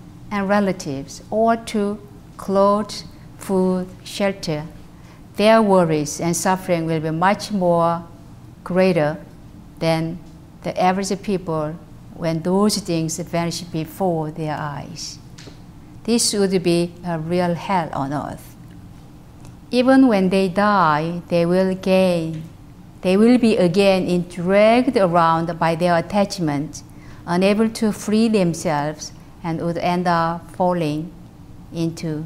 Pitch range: 160-195 Hz